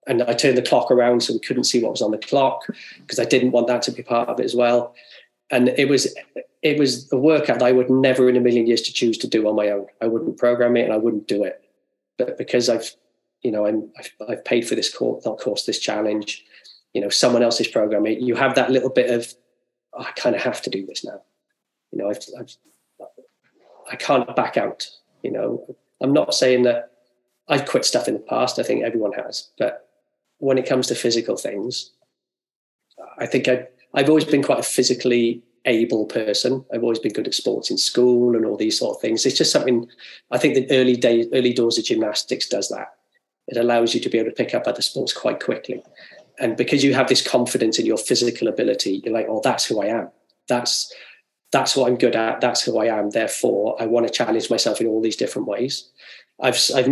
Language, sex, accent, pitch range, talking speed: English, male, British, 115-130 Hz, 230 wpm